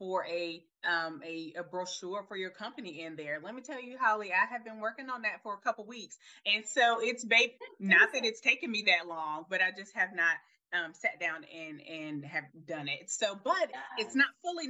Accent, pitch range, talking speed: American, 175-250 Hz, 230 wpm